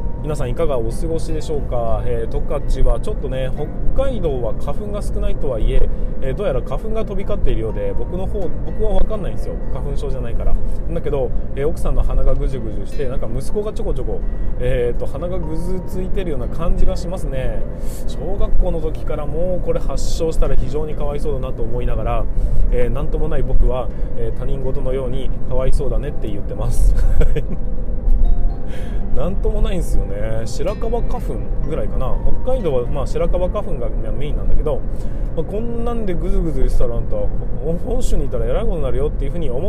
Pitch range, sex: 115-155 Hz, male